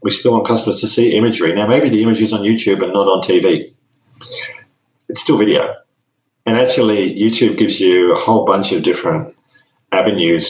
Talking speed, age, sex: 185 wpm, 40-59, male